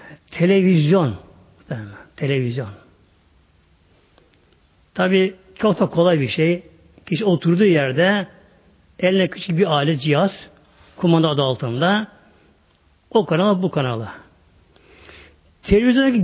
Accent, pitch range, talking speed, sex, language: native, 150-220 Hz, 90 wpm, male, Turkish